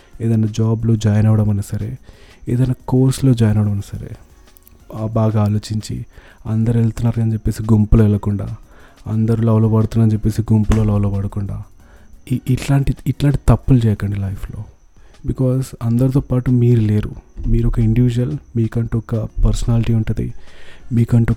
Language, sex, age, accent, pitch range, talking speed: Telugu, male, 30-49, native, 105-120 Hz, 130 wpm